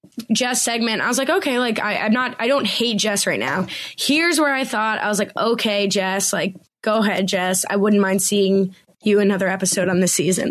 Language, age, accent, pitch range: English, 20-39, American, 205-250 Hz